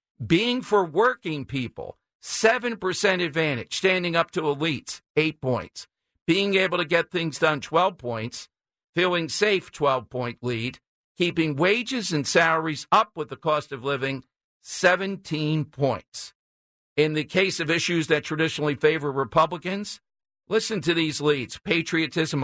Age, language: 50-69, English